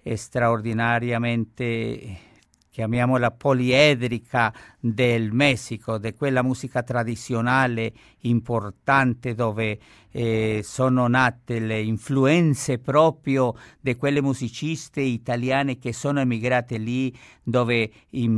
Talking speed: 90 wpm